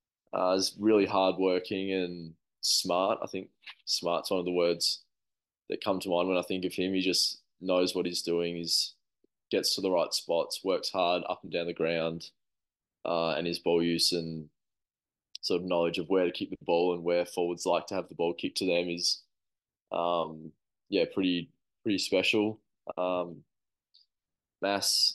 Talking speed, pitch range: 180 wpm, 85-90 Hz